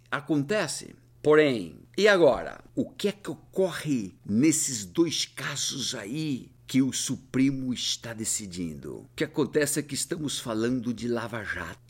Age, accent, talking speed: 60-79, Brazilian, 140 wpm